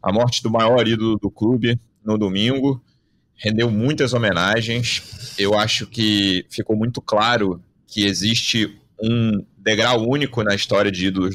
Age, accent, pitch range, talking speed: 30-49, Brazilian, 95-110 Hz, 145 wpm